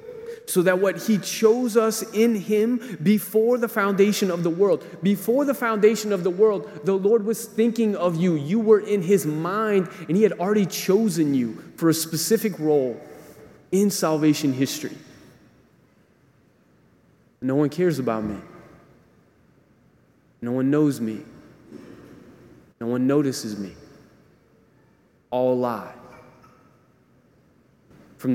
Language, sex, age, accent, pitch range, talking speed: English, male, 30-49, American, 135-195 Hz, 125 wpm